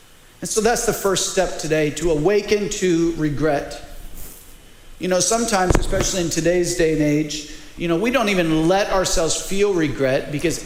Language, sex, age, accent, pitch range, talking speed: English, male, 40-59, American, 165-215 Hz, 170 wpm